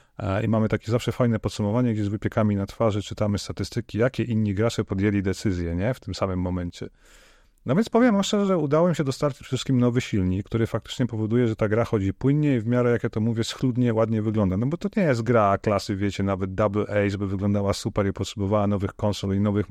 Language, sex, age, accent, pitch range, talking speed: Polish, male, 30-49, native, 100-125 Hz, 220 wpm